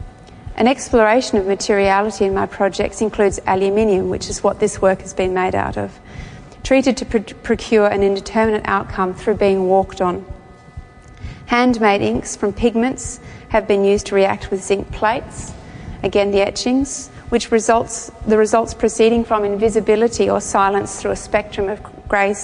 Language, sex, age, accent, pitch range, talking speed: English, female, 40-59, Australian, 195-220 Hz, 155 wpm